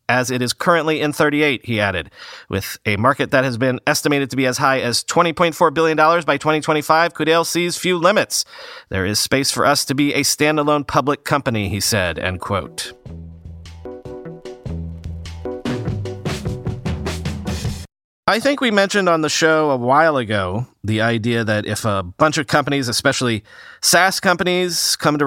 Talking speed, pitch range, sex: 155 wpm, 120-175 Hz, male